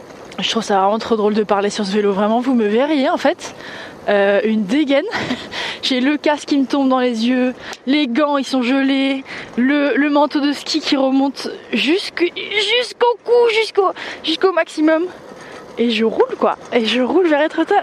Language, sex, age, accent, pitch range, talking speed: French, female, 20-39, French, 225-285 Hz, 180 wpm